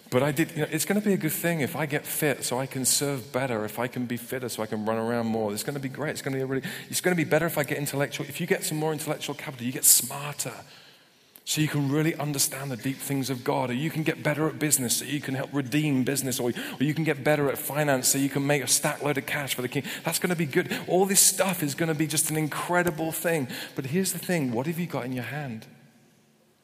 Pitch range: 140-175 Hz